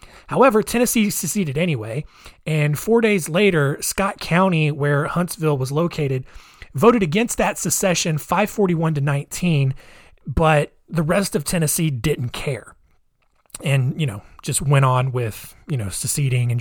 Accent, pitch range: American, 140-195 Hz